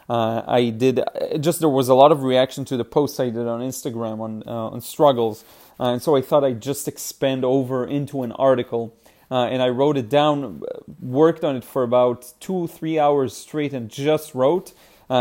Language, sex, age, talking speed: English, male, 30-49, 205 wpm